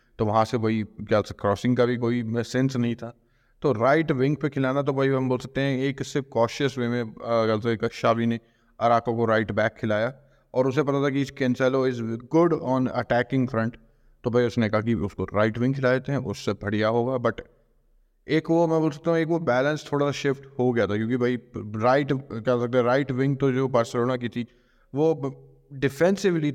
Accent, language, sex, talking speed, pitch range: native, Hindi, male, 205 wpm, 110-130 Hz